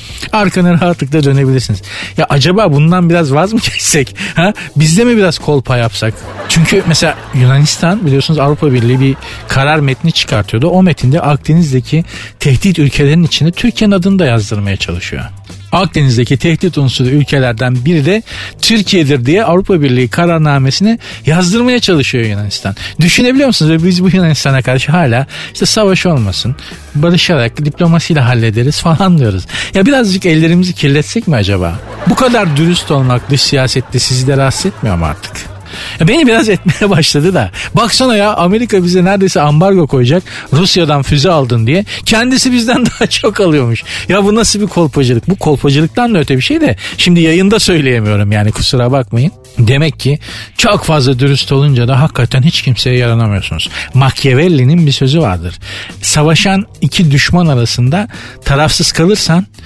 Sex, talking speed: male, 145 wpm